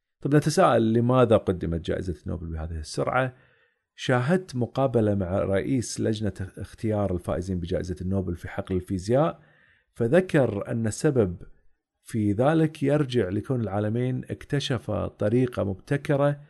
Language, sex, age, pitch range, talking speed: Arabic, male, 40-59, 95-130 Hz, 115 wpm